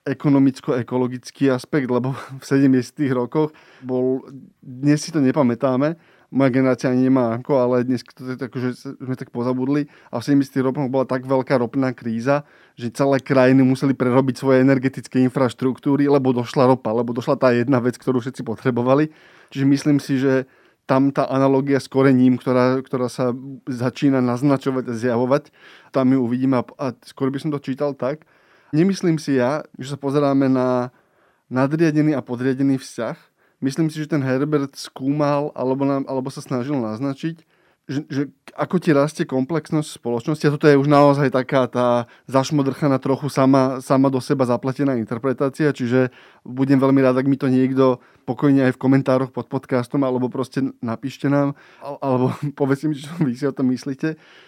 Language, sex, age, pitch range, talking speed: Slovak, male, 20-39, 130-145 Hz, 165 wpm